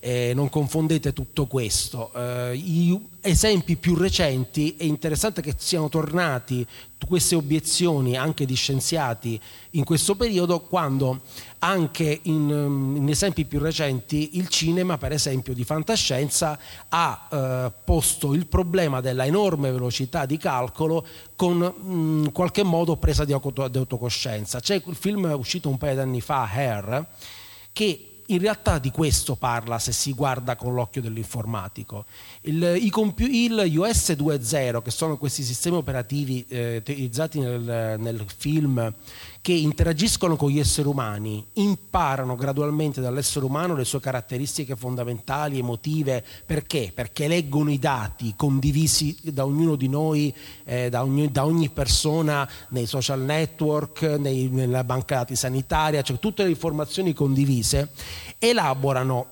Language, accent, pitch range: Italian, native, 125-165 Hz